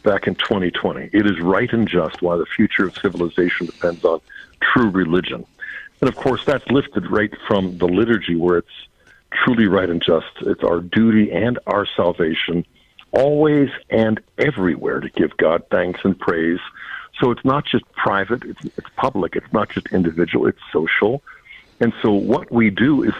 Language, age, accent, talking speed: English, 50-69, American, 175 wpm